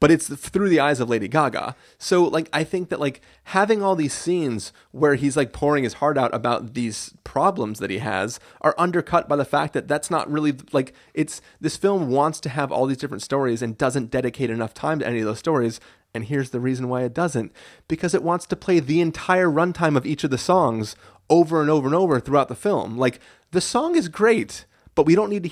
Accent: American